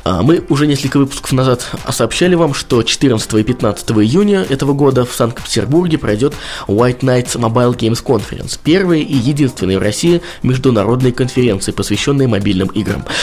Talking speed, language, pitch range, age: 145 wpm, Russian, 110-145 Hz, 20-39